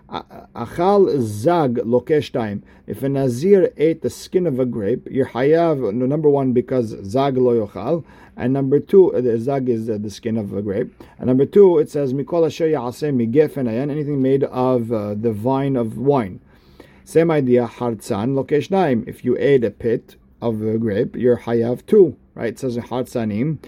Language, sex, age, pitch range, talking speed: English, male, 50-69, 115-150 Hz, 160 wpm